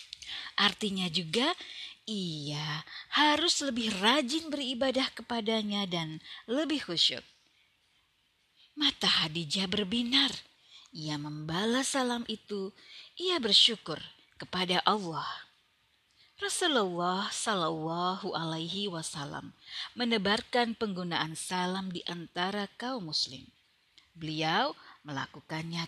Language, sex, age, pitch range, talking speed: Indonesian, female, 30-49, 165-250 Hz, 75 wpm